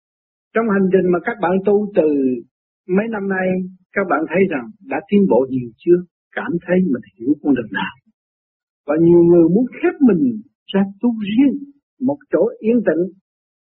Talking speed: 175 wpm